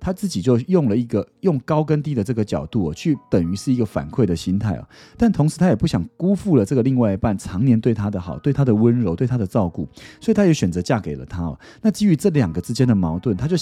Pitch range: 90-140 Hz